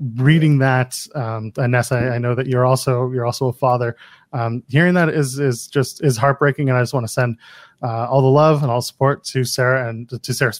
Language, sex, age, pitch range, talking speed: English, male, 20-39, 125-160 Hz, 230 wpm